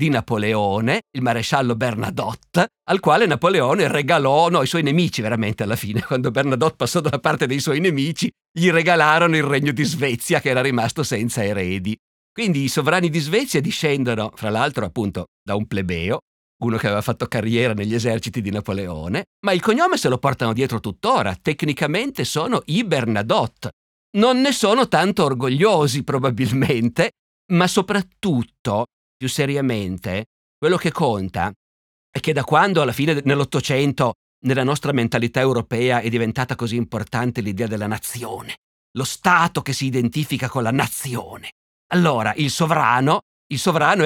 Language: Italian